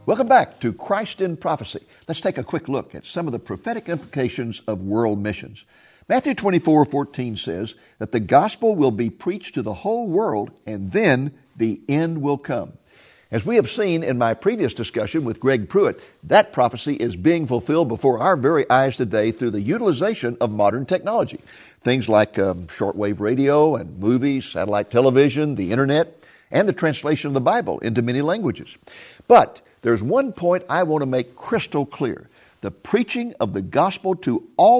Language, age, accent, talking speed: English, 50-69, American, 180 wpm